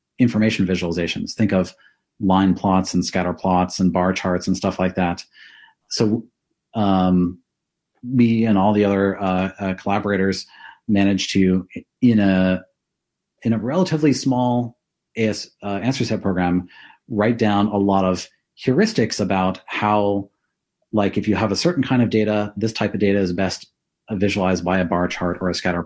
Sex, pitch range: male, 95-110 Hz